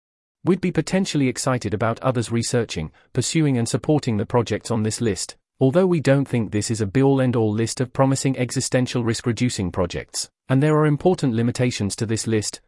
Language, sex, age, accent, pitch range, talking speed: English, male, 40-59, British, 110-140 Hz, 185 wpm